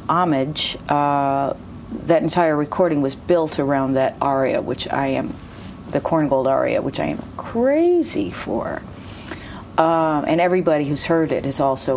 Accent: American